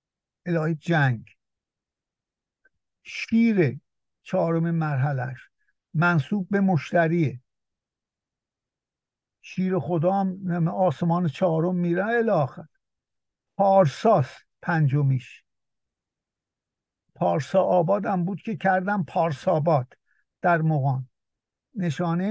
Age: 60-79